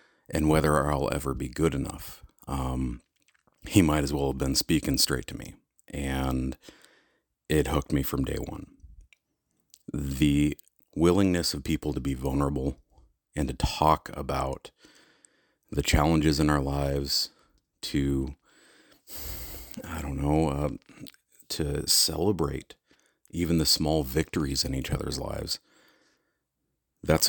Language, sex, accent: English, male, American